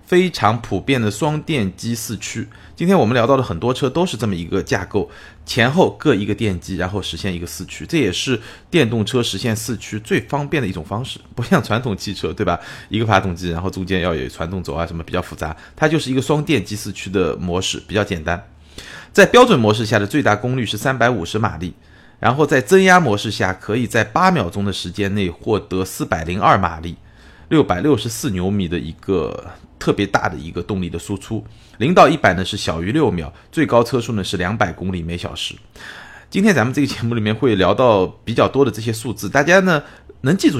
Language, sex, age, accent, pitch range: Chinese, male, 30-49, native, 95-125 Hz